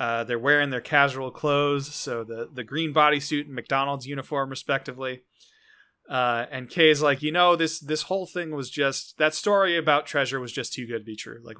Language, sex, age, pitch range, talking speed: English, male, 30-49, 125-165 Hz, 200 wpm